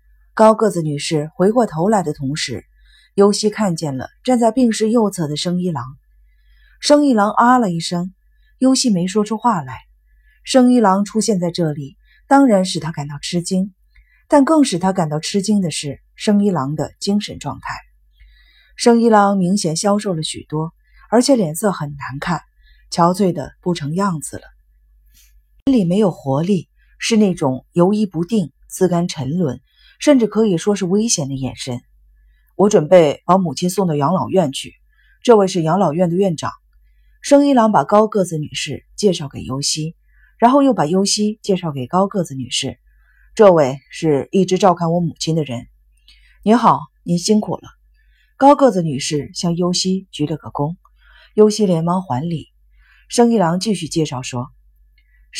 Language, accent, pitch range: Chinese, native, 145-210 Hz